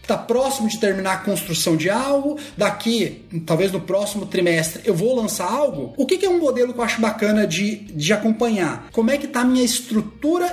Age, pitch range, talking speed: 30-49, 195-265 Hz, 205 wpm